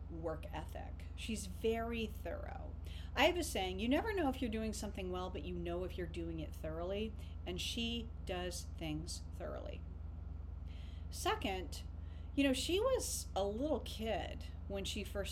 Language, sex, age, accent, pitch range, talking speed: English, female, 40-59, American, 80-100 Hz, 160 wpm